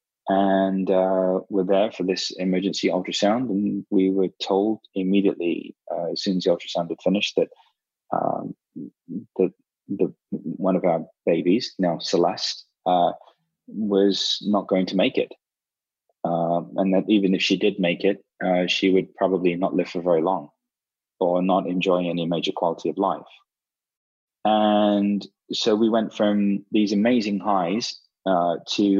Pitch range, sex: 90-100 Hz, male